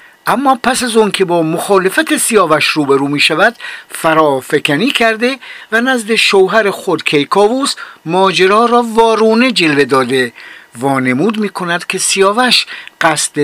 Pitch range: 140-220 Hz